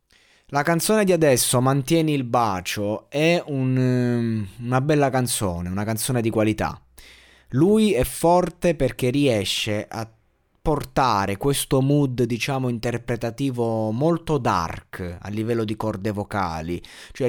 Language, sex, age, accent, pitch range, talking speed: Italian, male, 20-39, native, 95-120 Hz, 120 wpm